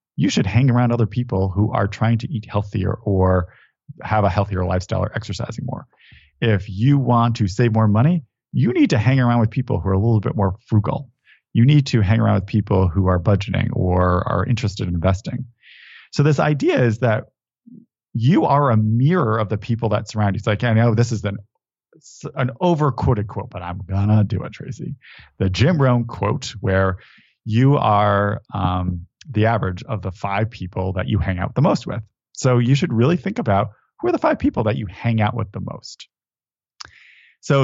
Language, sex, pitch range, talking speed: English, male, 100-130 Hz, 205 wpm